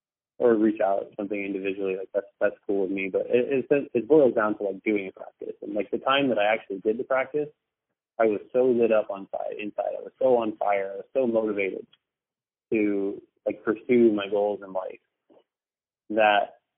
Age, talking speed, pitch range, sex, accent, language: 20-39, 205 wpm, 100-115 Hz, male, American, English